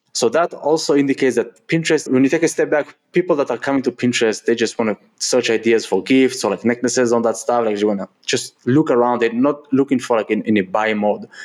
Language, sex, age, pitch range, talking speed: English, male, 20-39, 110-135 Hz, 255 wpm